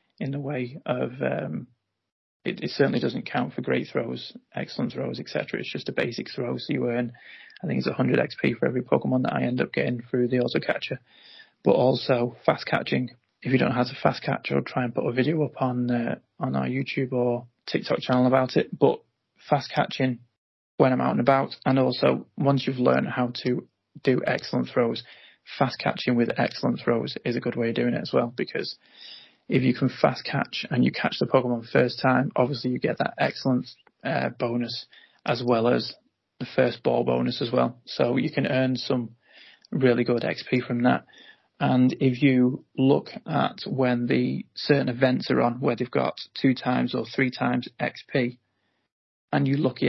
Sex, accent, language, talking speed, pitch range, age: male, British, English, 195 wpm, 120-130 Hz, 20-39